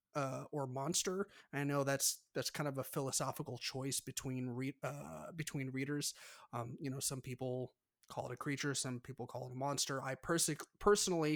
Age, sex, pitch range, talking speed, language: 30-49, male, 130-155 Hz, 190 wpm, English